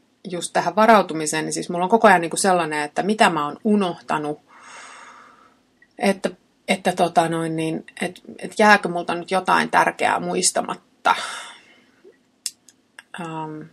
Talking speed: 130 wpm